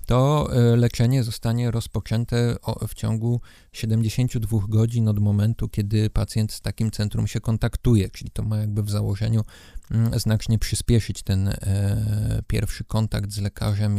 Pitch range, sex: 105-120 Hz, male